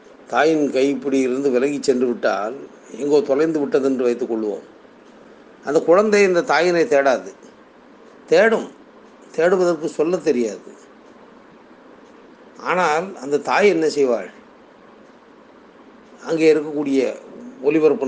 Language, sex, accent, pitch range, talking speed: Tamil, male, native, 120-145 Hz, 95 wpm